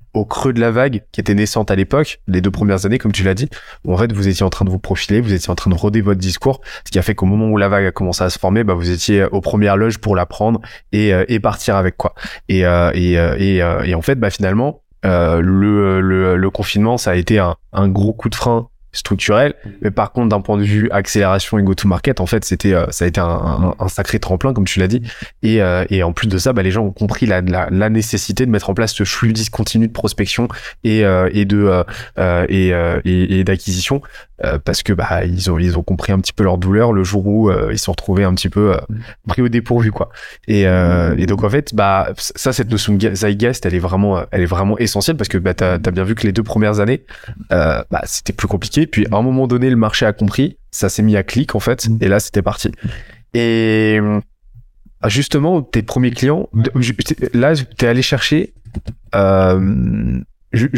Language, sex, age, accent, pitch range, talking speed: French, male, 20-39, French, 95-115 Hz, 245 wpm